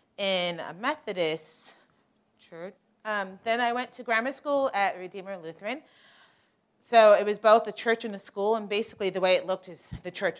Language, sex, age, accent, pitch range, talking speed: English, female, 30-49, American, 165-210 Hz, 185 wpm